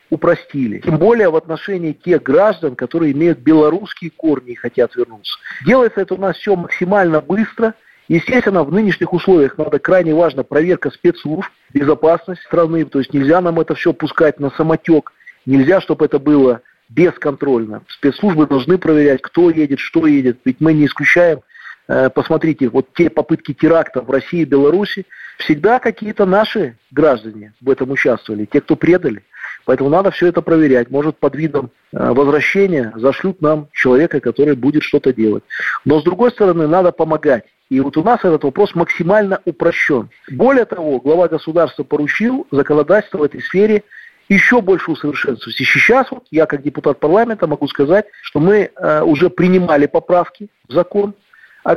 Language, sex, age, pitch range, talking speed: Russian, male, 40-59, 145-185 Hz, 155 wpm